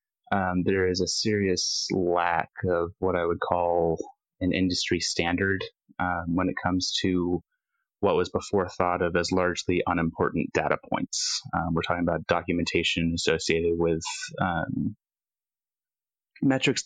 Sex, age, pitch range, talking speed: male, 20-39, 85-95 Hz, 135 wpm